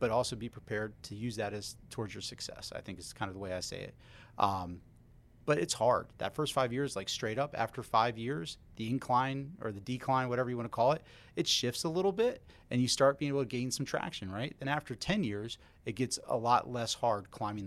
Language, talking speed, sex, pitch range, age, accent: English, 240 wpm, male, 105-125 Hz, 30-49, American